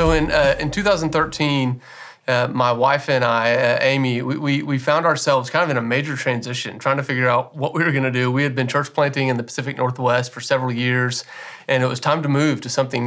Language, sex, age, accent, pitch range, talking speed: English, male, 30-49, American, 125-155 Hz, 240 wpm